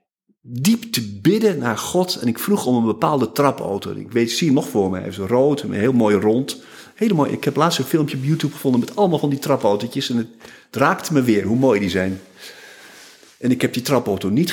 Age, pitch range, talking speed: 50-69, 105-140 Hz, 235 wpm